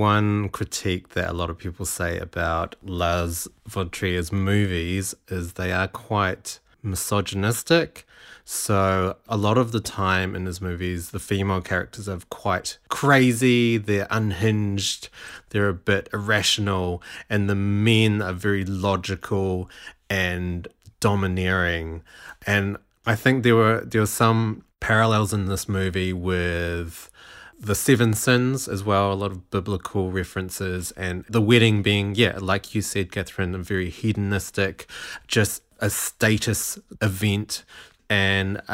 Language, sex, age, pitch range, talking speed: English, male, 20-39, 95-110 Hz, 135 wpm